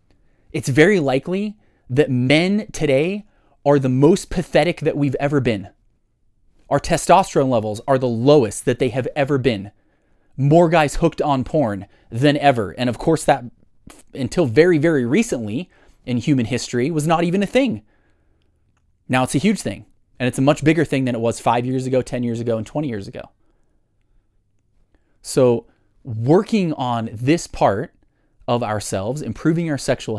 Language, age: English, 20-39